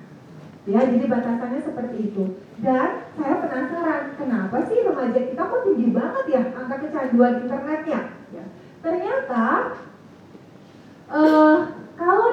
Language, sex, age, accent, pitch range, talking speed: Indonesian, female, 30-49, native, 245-335 Hz, 110 wpm